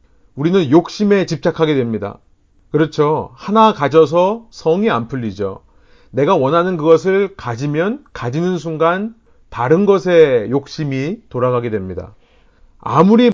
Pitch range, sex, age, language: 130-190 Hz, male, 40-59, Korean